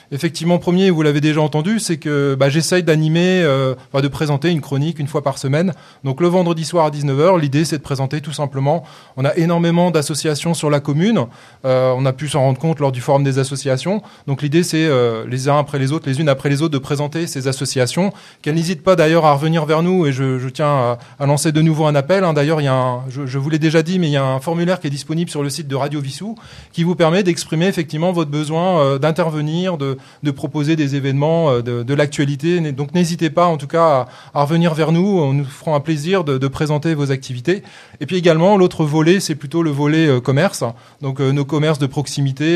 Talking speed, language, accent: 240 wpm, French, French